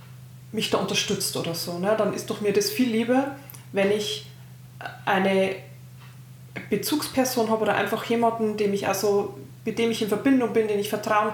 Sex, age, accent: female, 20-39, German